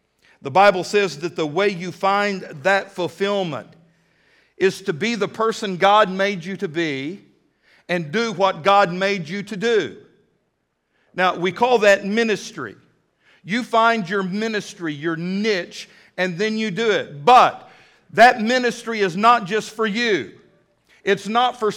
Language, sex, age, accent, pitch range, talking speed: English, male, 50-69, American, 185-225 Hz, 150 wpm